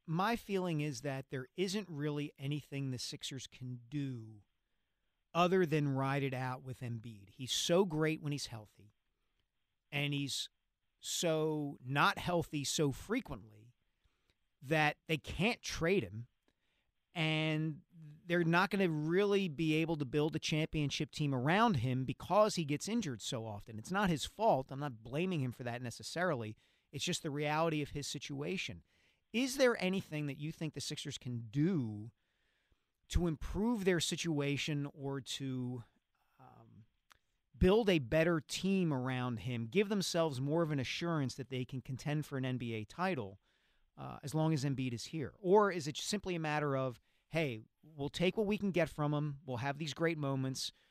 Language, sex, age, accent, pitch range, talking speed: English, male, 40-59, American, 125-165 Hz, 165 wpm